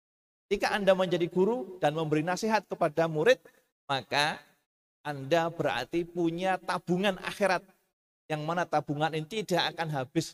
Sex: male